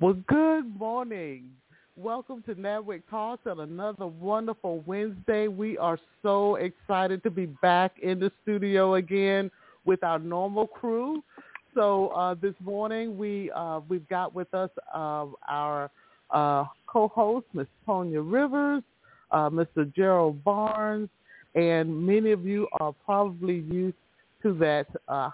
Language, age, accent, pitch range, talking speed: English, 50-69, American, 165-210 Hz, 135 wpm